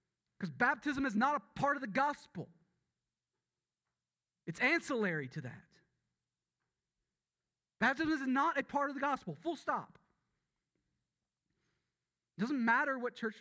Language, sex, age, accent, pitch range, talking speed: English, male, 40-59, American, 165-215 Hz, 125 wpm